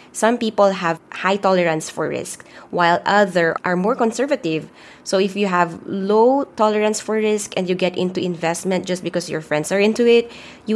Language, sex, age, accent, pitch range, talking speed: English, female, 20-39, Filipino, 165-205 Hz, 185 wpm